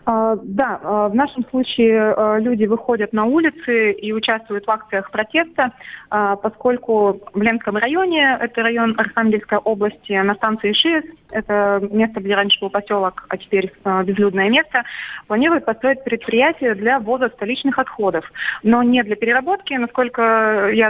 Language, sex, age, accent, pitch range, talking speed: Russian, female, 20-39, native, 200-235 Hz, 135 wpm